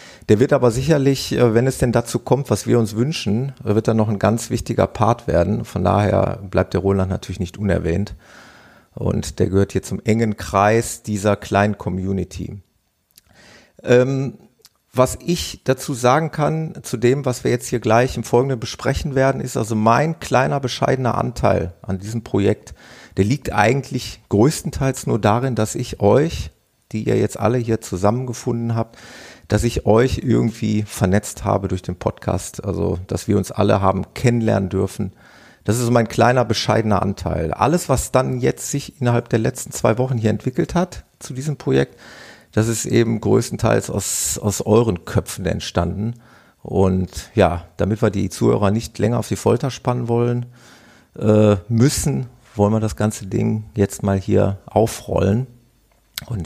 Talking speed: 165 wpm